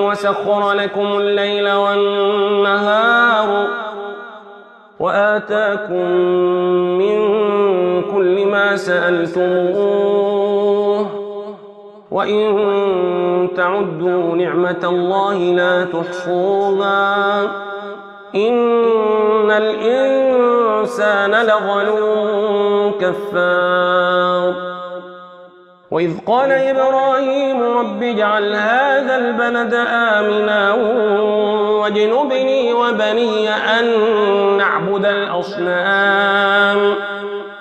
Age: 30-49